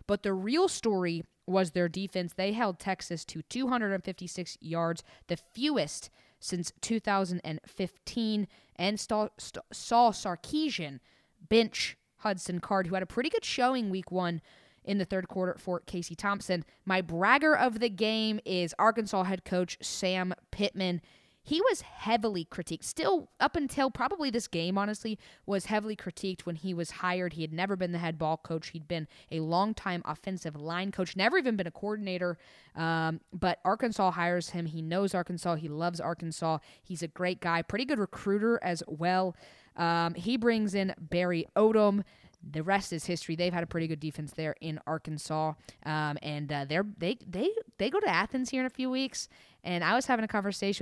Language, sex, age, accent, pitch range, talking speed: English, female, 20-39, American, 170-215 Hz, 175 wpm